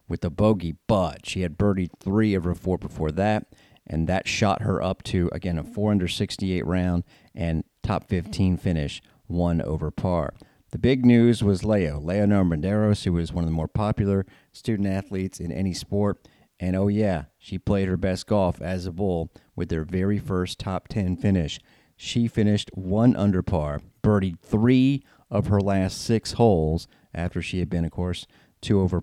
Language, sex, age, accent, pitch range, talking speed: English, male, 40-59, American, 90-110 Hz, 180 wpm